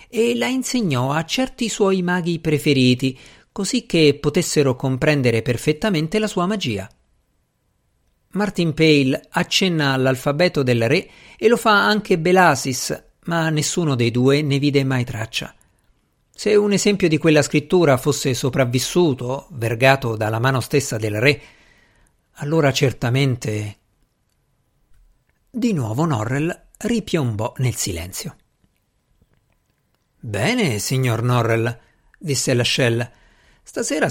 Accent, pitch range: native, 125-165 Hz